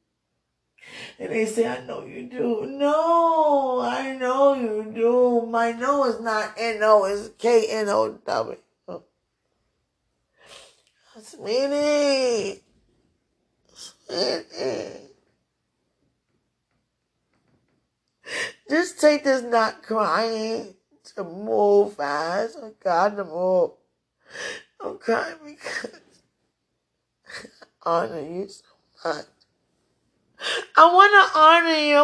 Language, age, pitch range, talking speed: English, 20-39, 210-310 Hz, 90 wpm